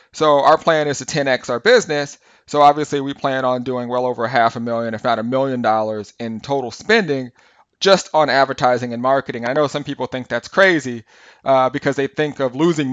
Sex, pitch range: male, 125-145 Hz